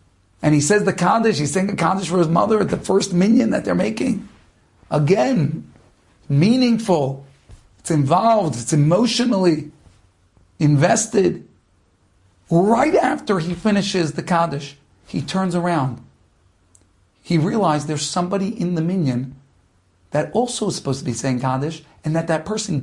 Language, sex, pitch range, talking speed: English, male, 125-205 Hz, 140 wpm